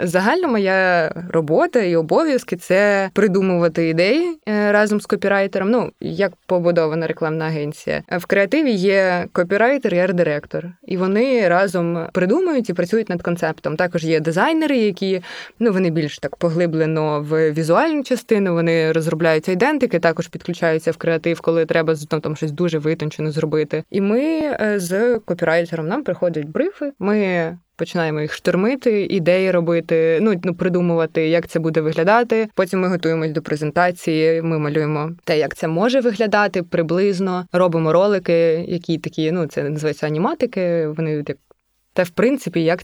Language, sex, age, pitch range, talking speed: Ukrainian, female, 20-39, 160-195 Hz, 145 wpm